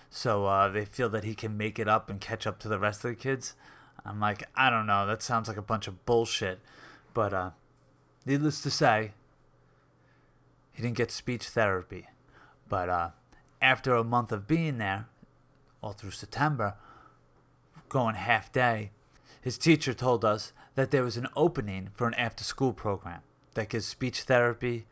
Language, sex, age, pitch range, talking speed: English, male, 30-49, 110-130 Hz, 175 wpm